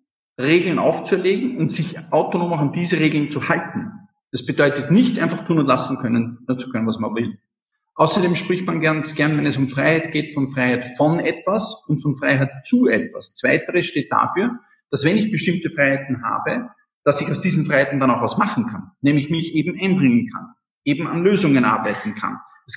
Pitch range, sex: 135-180 Hz, male